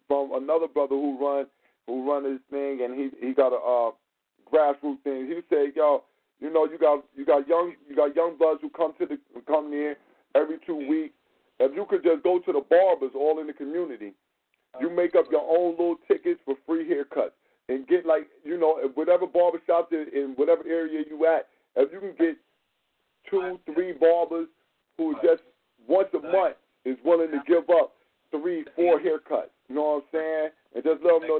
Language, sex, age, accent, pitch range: Chinese, male, 40-59, American, 140-175 Hz